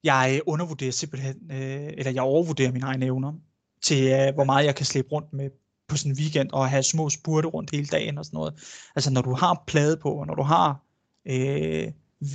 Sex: male